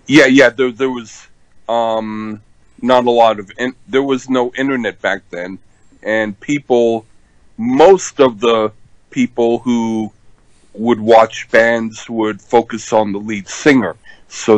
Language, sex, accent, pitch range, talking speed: English, male, American, 105-135 Hz, 140 wpm